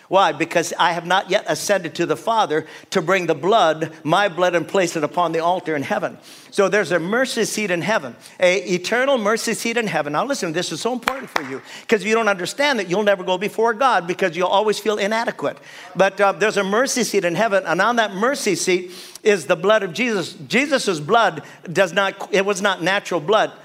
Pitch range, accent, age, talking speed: 175-230 Hz, American, 50-69, 220 wpm